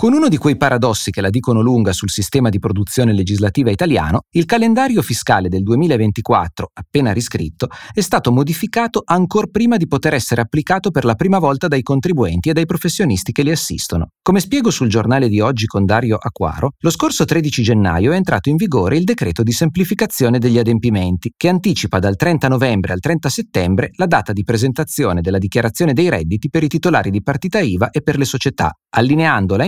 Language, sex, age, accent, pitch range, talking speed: Italian, male, 30-49, native, 105-165 Hz, 190 wpm